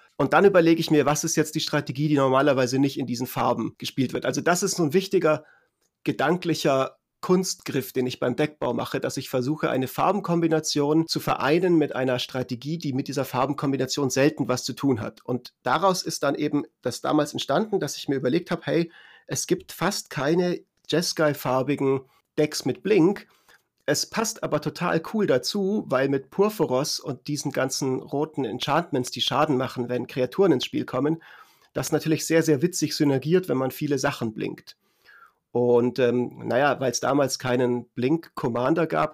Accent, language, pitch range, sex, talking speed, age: German, German, 130-155 Hz, male, 180 wpm, 40-59